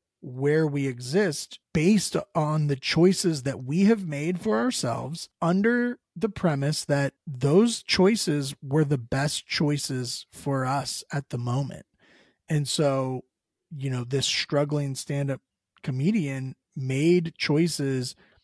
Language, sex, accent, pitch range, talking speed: English, male, American, 135-165 Hz, 125 wpm